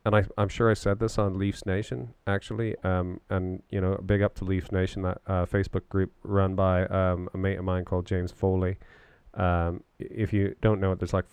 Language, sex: English, male